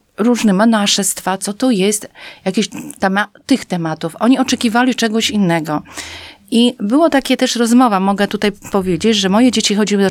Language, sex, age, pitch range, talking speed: Polish, female, 40-59, 190-245 Hz, 150 wpm